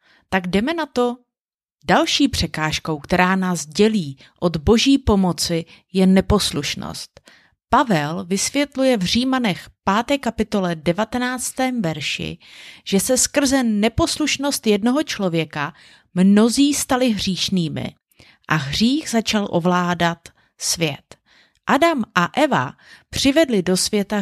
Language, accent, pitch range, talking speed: Czech, native, 175-260 Hz, 105 wpm